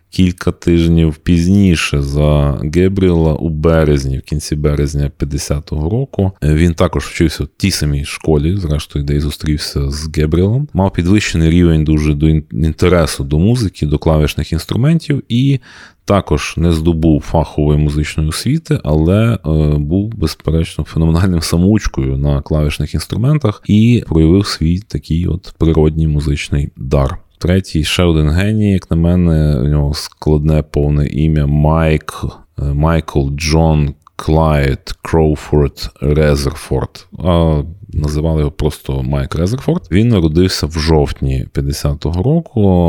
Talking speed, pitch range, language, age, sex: 125 wpm, 75-90 Hz, Ukrainian, 30-49, male